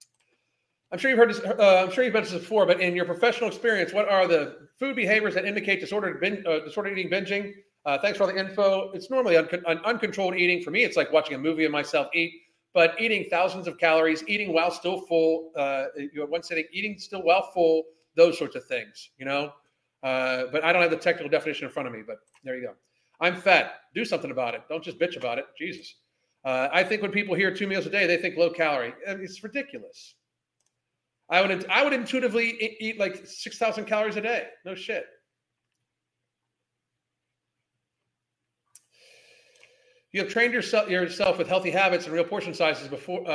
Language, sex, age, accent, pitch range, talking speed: English, male, 40-59, American, 170-235 Hz, 195 wpm